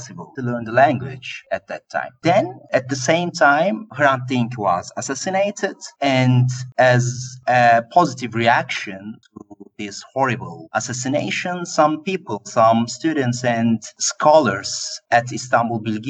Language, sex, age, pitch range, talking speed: English, male, 30-49, 115-150 Hz, 125 wpm